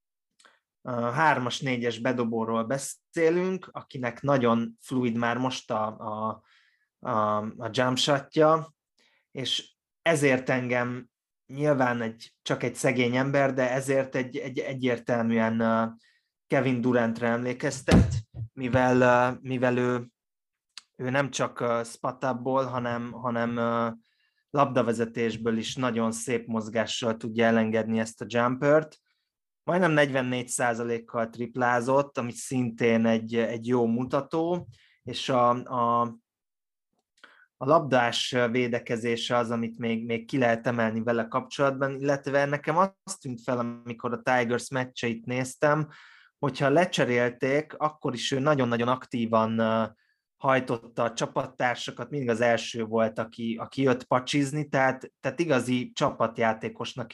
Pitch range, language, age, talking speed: 115-135 Hz, Hungarian, 20-39, 110 wpm